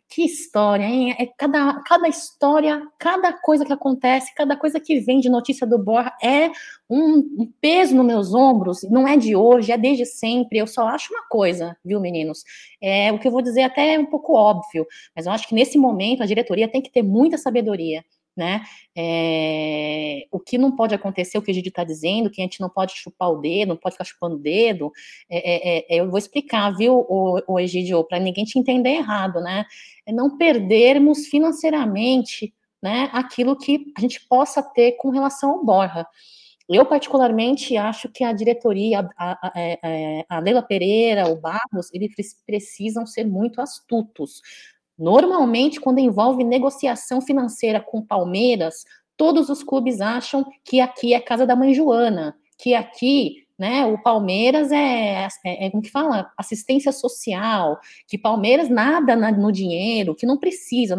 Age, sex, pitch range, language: 20-39, female, 195-270 Hz, Portuguese